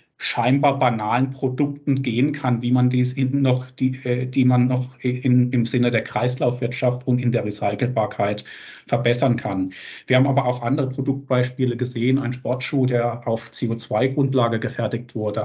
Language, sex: German, male